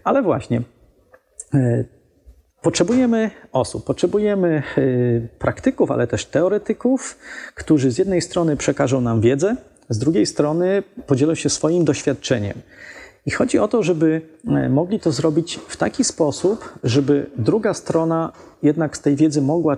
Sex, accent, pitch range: male, native, 130-175 Hz